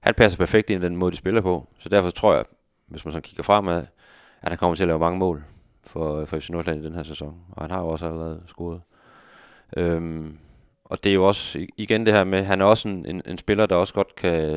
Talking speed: 255 wpm